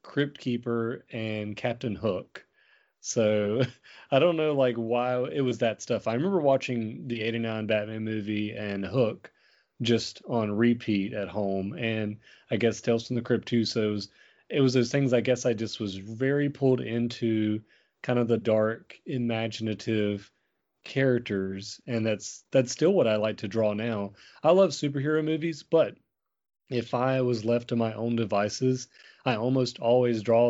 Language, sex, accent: English, male, American